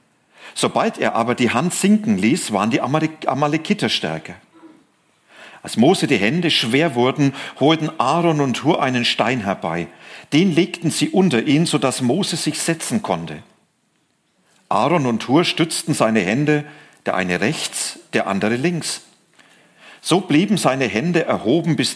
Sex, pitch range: male, 115-165 Hz